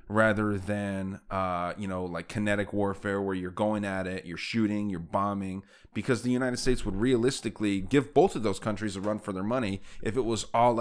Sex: male